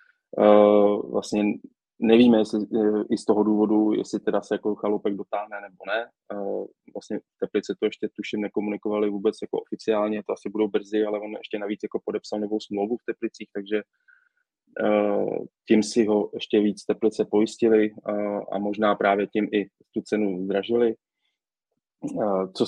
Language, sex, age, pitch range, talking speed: Czech, male, 20-39, 105-110 Hz, 145 wpm